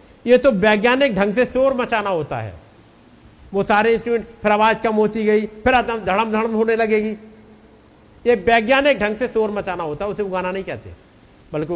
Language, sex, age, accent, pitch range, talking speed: Hindi, male, 50-69, native, 180-235 Hz, 175 wpm